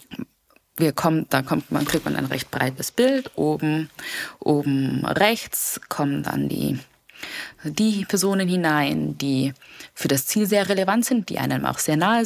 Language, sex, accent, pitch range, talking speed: German, female, German, 140-195 Hz, 155 wpm